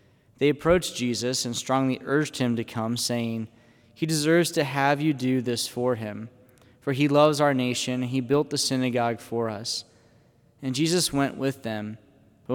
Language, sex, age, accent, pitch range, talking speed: English, male, 20-39, American, 120-145 Hz, 175 wpm